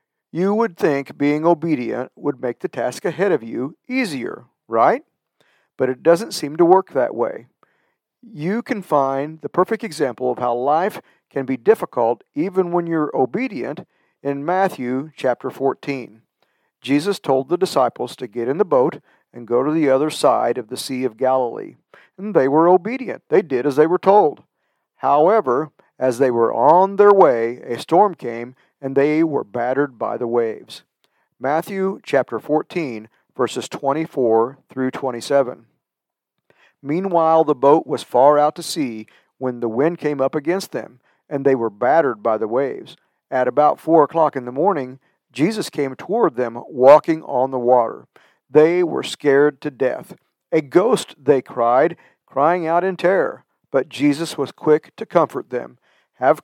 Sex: male